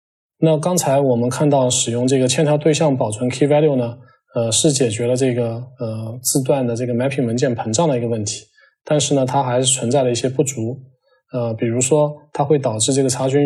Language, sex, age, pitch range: Chinese, male, 20-39, 120-140 Hz